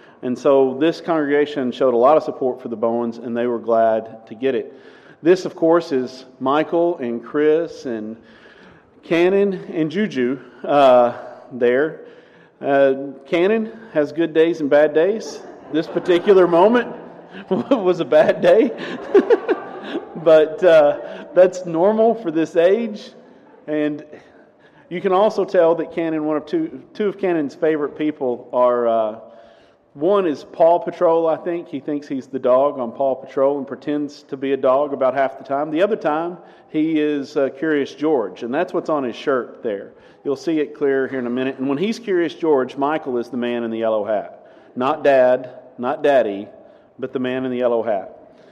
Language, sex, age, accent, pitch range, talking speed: English, male, 40-59, American, 130-170 Hz, 175 wpm